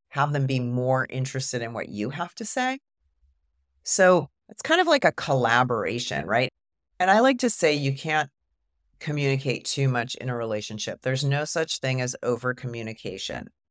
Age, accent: 40-59, American